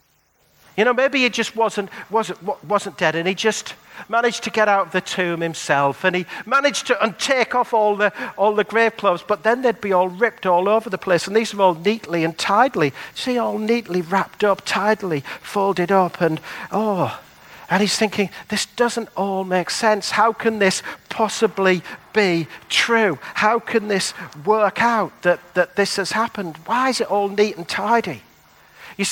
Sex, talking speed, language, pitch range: male, 190 wpm, English, 140-215 Hz